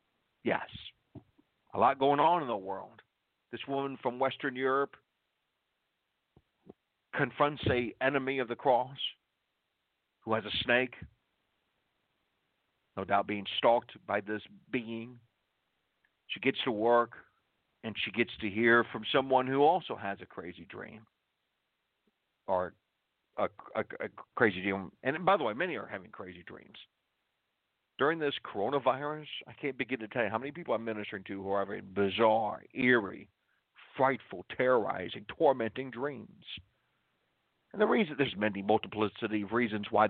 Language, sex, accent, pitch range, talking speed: English, male, American, 105-130 Hz, 140 wpm